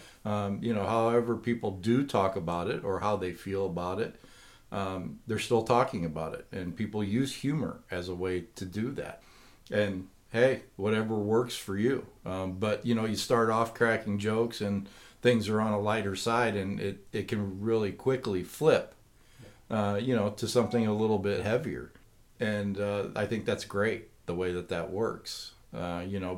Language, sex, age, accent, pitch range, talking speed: English, male, 50-69, American, 95-115 Hz, 190 wpm